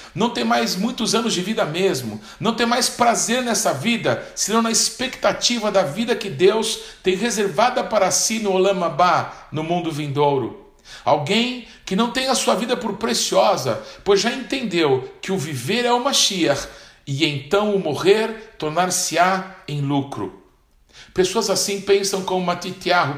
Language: Portuguese